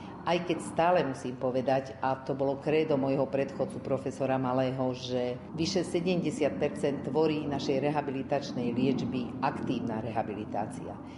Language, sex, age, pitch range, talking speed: Slovak, female, 50-69, 120-140 Hz, 120 wpm